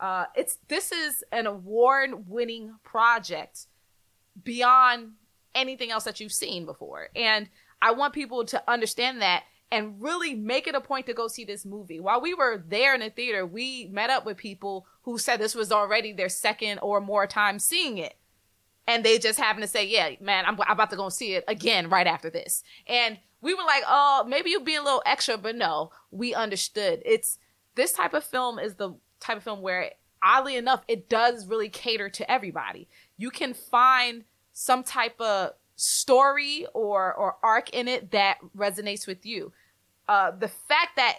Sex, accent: female, American